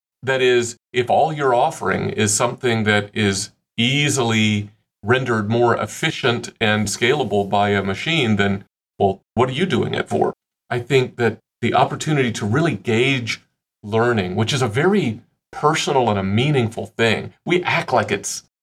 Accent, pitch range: American, 105-135 Hz